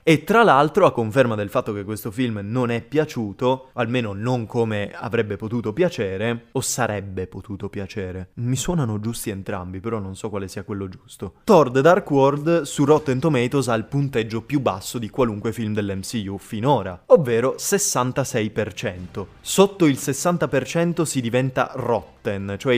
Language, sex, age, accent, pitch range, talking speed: Italian, male, 20-39, native, 105-130 Hz, 160 wpm